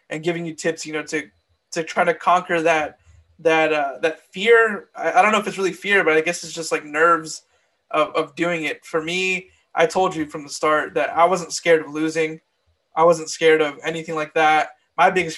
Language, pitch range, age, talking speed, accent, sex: English, 150-165 Hz, 20-39, 225 wpm, American, male